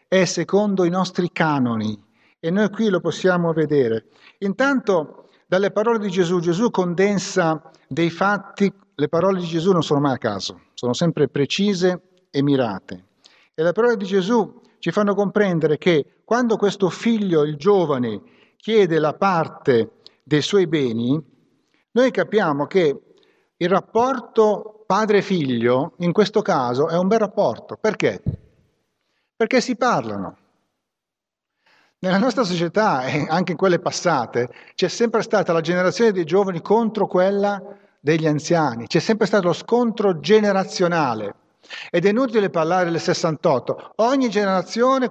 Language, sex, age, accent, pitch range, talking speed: Italian, male, 50-69, native, 165-220 Hz, 140 wpm